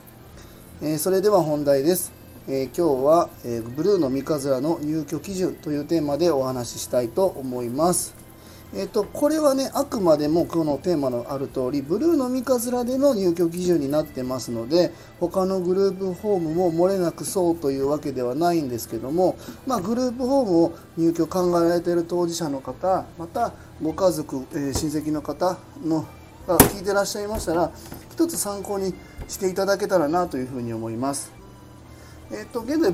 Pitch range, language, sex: 135-205 Hz, Japanese, male